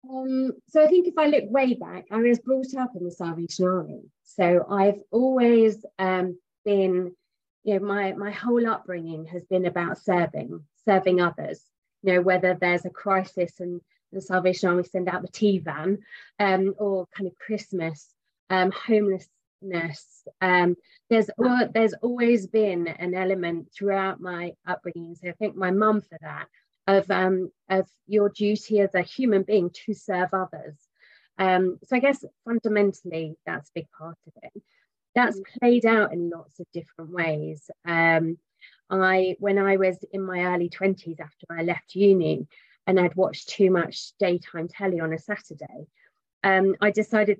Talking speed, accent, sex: 165 wpm, British, female